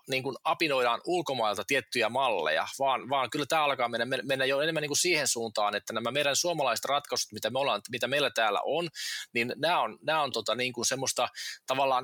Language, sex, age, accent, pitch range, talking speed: Finnish, male, 20-39, native, 115-145 Hz, 195 wpm